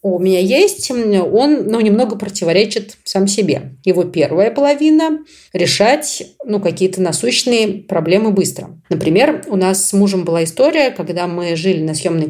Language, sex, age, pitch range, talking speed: Russian, female, 30-49, 165-215 Hz, 155 wpm